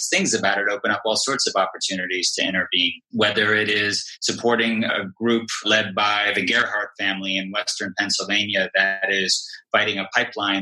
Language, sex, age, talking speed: English, male, 30-49, 170 wpm